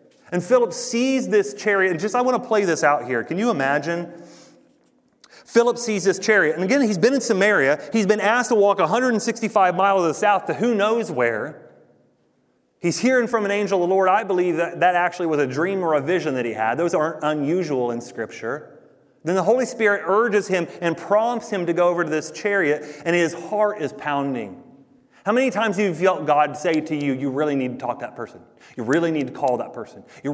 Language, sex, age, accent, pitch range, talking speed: English, male, 30-49, American, 135-200 Hz, 225 wpm